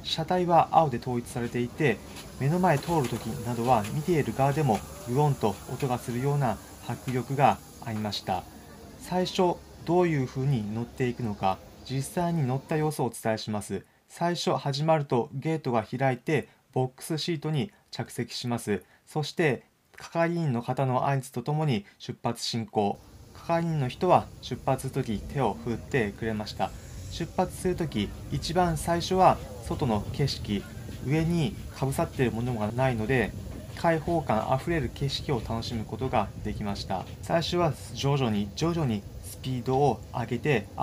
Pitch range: 110-155 Hz